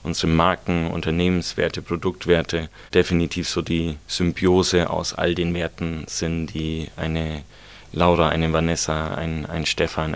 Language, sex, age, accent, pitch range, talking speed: German, male, 30-49, German, 80-90 Hz, 125 wpm